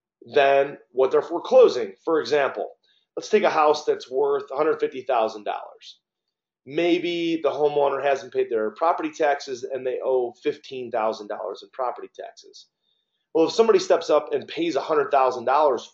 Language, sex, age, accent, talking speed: English, male, 30-49, American, 135 wpm